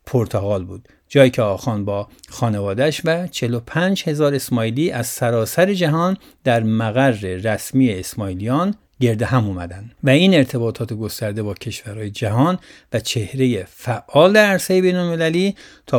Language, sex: Persian, male